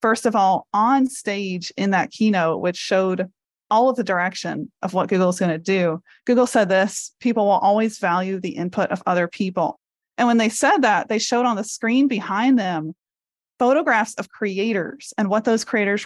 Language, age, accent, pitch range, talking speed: English, 30-49, American, 190-245 Hz, 195 wpm